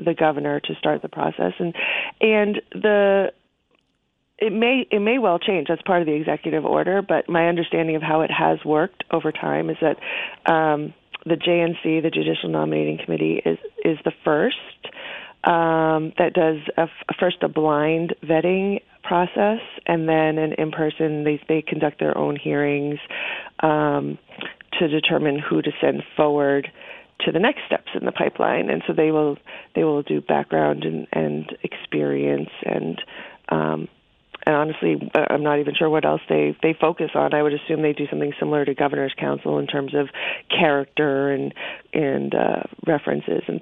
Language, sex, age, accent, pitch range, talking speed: English, female, 30-49, American, 135-165 Hz, 170 wpm